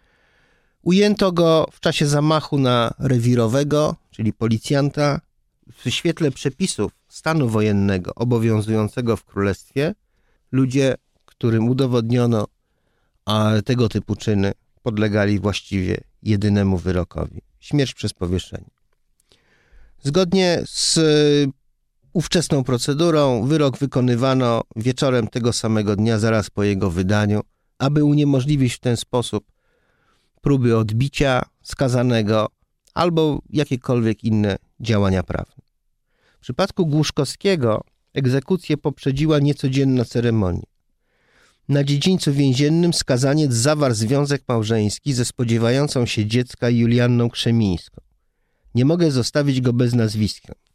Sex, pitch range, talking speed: male, 105-145 Hz, 100 wpm